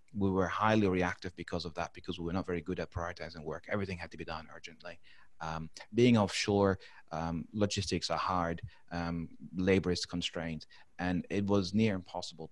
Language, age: English, 30-49